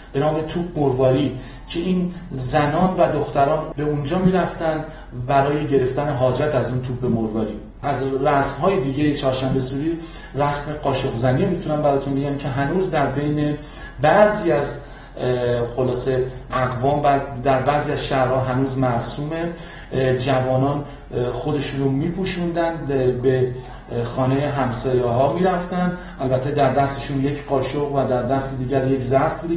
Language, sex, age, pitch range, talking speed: Persian, male, 40-59, 130-155 Hz, 130 wpm